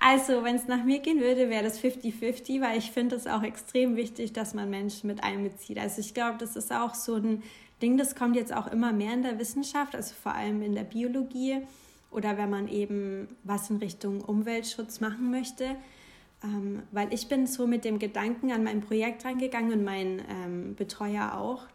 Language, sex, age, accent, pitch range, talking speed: German, female, 20-39, German, 205-240 Hz, 200 wpm